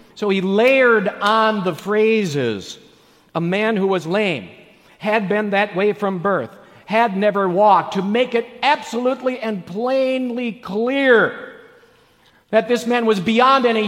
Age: 50-69